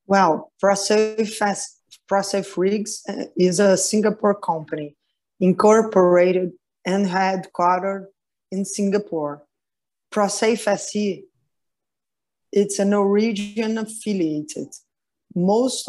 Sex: female